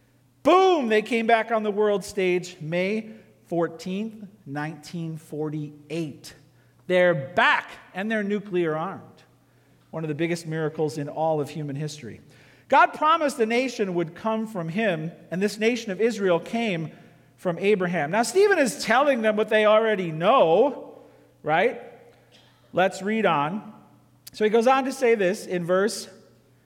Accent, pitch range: American, 165-235 Hz